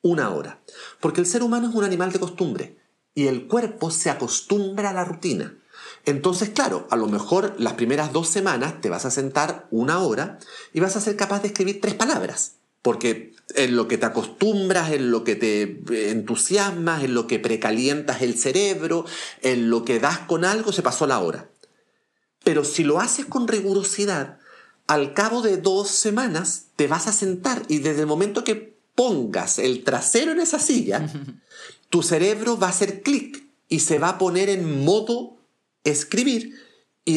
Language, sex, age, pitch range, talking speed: Spanish, male, 40-59, 150-210 Hz, 180 wpm